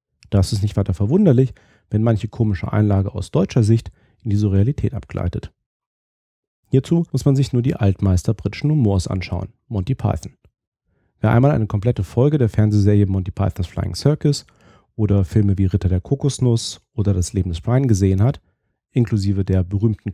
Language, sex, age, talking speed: German, male, 40-59, 165 wpm